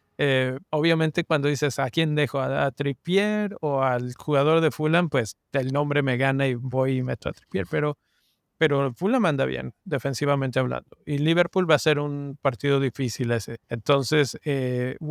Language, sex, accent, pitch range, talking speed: Spanish, male, Mexican, 135-160 Hz, 175 wpm